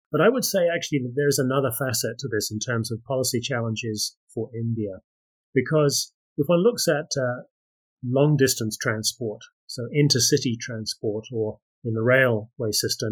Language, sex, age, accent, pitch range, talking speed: English, male, 30-49, British, 115-140 Hz, 160 wpm